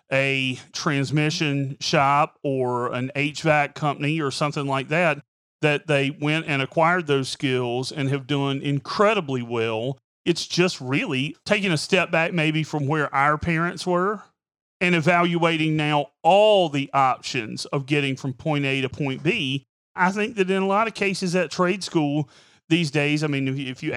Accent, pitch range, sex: American, 140-185 Hz, male